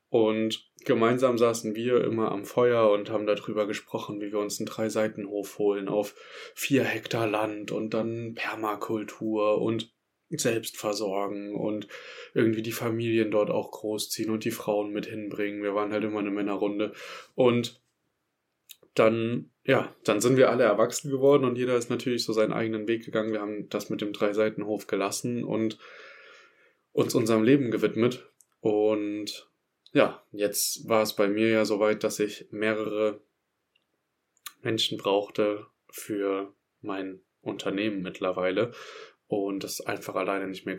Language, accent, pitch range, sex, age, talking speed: German, German, 105-110 Hz, male, 20-39, 145 wpm